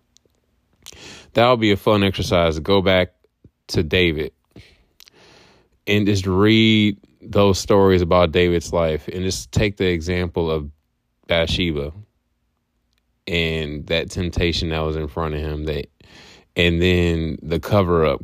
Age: 20-39